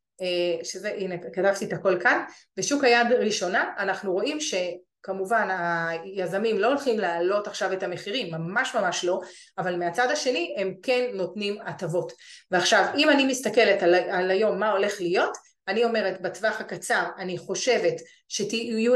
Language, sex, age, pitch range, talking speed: Hebrew, female, 30-49, 185-245 Hz, 145 wpm